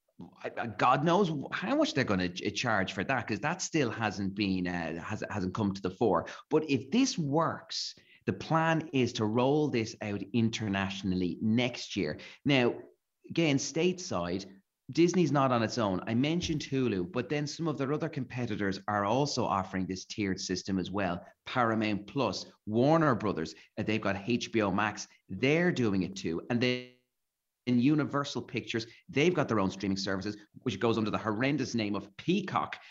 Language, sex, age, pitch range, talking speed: English, male, 30-49, 105-150 Hz, 175 wpm